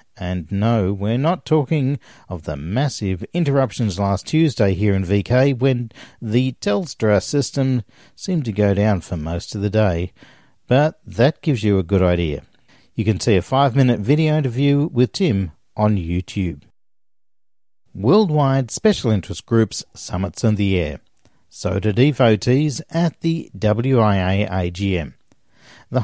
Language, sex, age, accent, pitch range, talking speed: English, male, 50-69, Australian, 95-135 Hz, 140 wpm